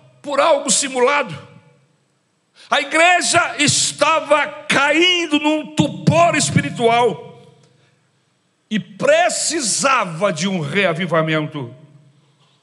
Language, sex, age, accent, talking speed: Portuguese, male, 60-79, Brazilian, 70 wpm